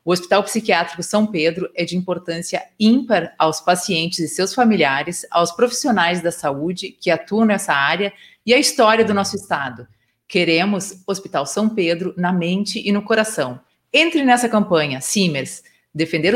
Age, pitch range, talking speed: 30-49, 170-210 Hz, 155 wpm